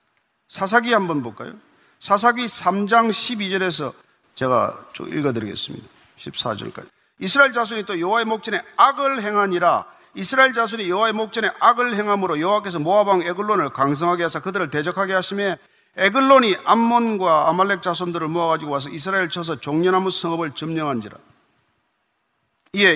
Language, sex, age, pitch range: Korean, male, 40-59, 160-230 Hz